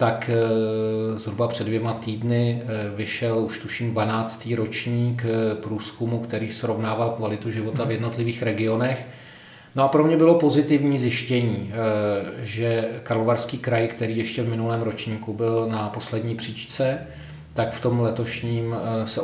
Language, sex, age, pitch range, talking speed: Czech, male, 40-59, 110-120 Hz, 130 wpm